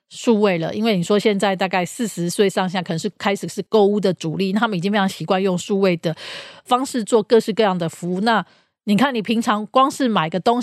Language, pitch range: Chinese, 185-225 Hz